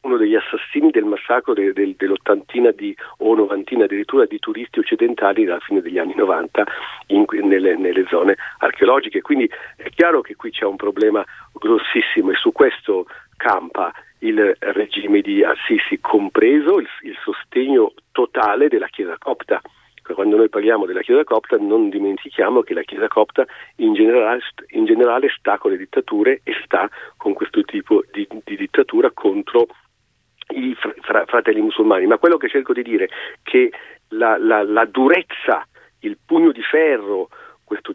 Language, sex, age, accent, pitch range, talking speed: Italian, male, 40-59, native, 330-425 Hz, 160 wpm